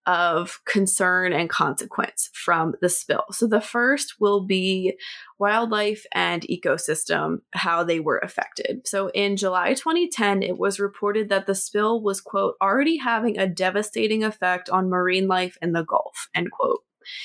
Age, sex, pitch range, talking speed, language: 20-39, female, 185-220 Hz, 155 wpm, English